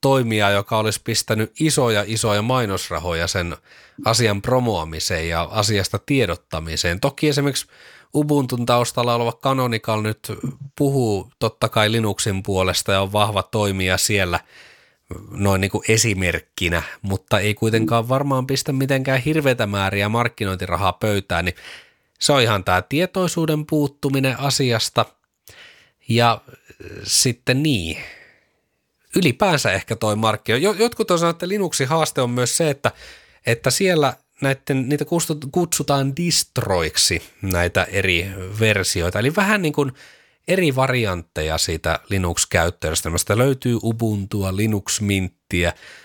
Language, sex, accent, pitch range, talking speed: Finnish, male, native, 95-135 Hz, 115 wpm